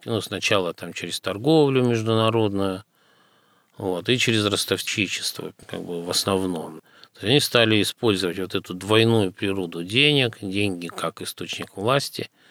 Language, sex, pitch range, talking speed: Russian, male, 90-115 Hz, 125 wpm